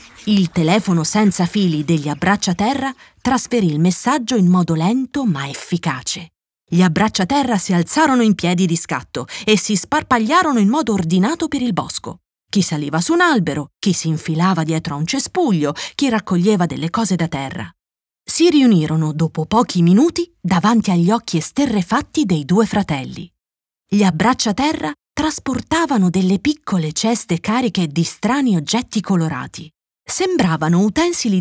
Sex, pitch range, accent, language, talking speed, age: female, 170-250 Hz, native, Italian, 140 wpm, 30-49